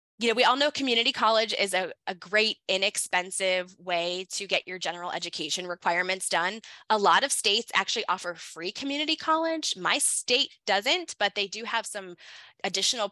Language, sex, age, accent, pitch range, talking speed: English, female, 20-39, American, 185-230 Hz, 175 wpm